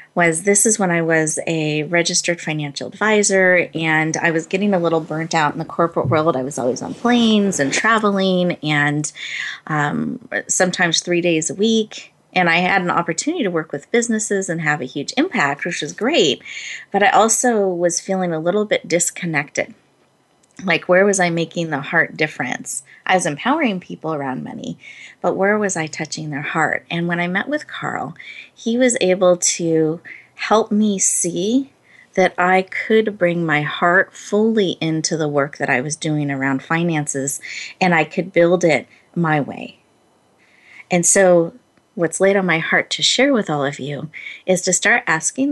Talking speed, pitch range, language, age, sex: 180 wpm, 160-200 Hz, English, 30-49, female